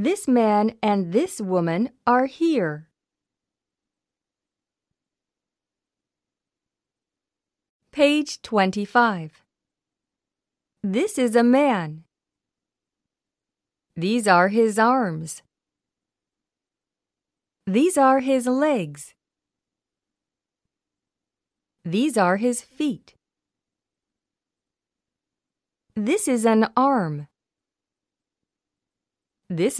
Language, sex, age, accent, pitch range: Korean, female, 30-49, American, 185-255 Hz